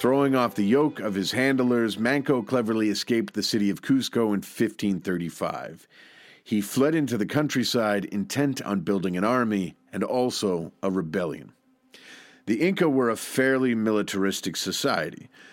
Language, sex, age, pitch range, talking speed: English, male, 40-59, 100-130 Hz, 145 wpm